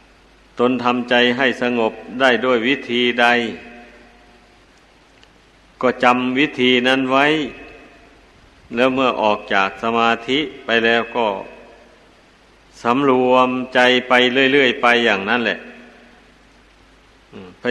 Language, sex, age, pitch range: Thai, male, 60-79, 115-125 Hz